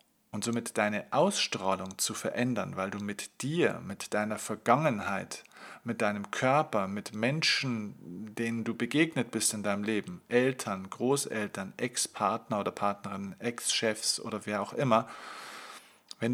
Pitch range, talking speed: 105-135 Hz, 130 wpm